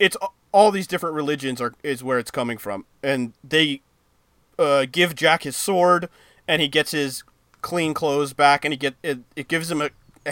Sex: male